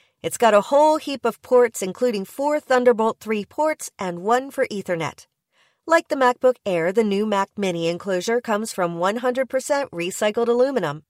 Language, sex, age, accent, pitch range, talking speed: English, female, 40-59, American, 190-255 Hz, 160 wpm